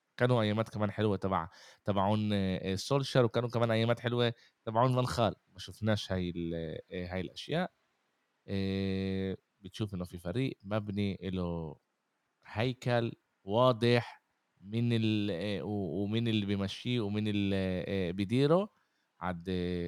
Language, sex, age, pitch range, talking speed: Arabic, male, 20-39, 95-115 Hz, 95 wpm